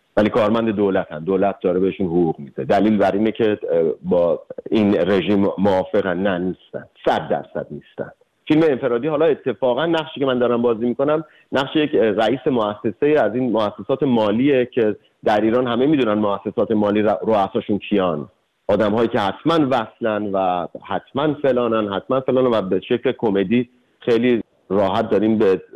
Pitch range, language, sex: 100-135 Hz, Persian, male